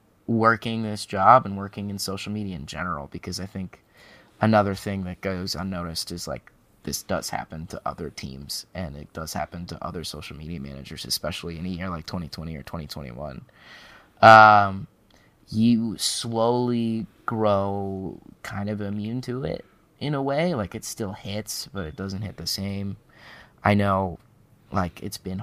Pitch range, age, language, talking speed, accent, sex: 95-110 Hz, 20-39, English, 165 wpm, American, male